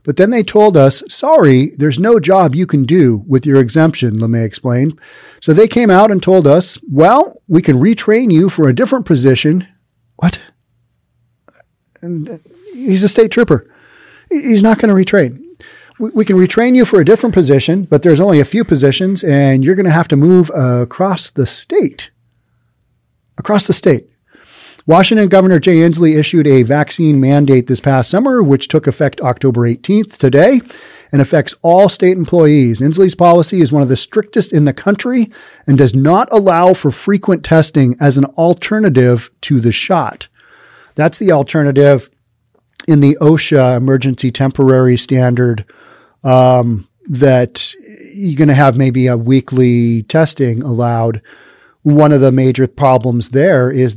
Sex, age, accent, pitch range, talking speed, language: male, 40-59, American, 130-190 Hz, 160 wpm, English